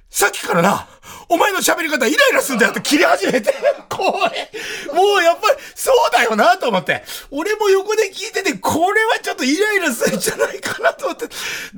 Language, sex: Japanese, male